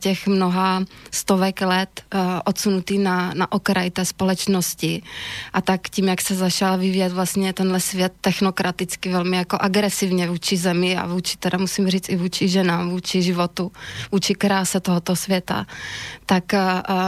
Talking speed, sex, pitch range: 150 wpm, female, 180-195 Hz